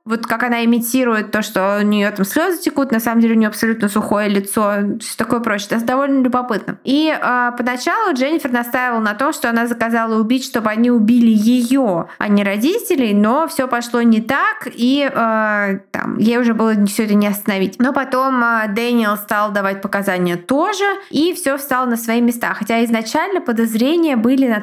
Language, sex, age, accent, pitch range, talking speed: Russian, female, 20-39, native, 220-265 Hz, 190 wpm